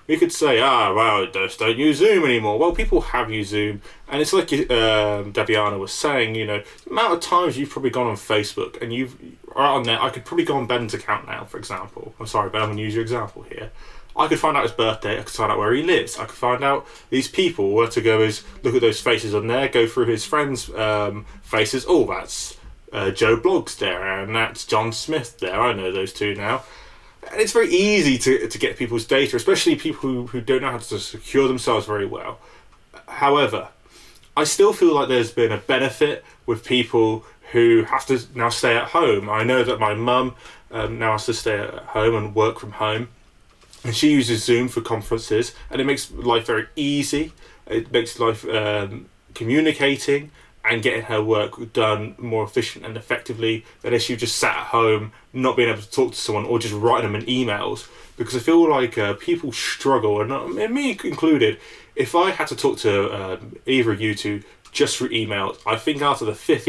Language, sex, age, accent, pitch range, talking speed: English, male, 20-39, British, 110-140 Hz, 215 wpm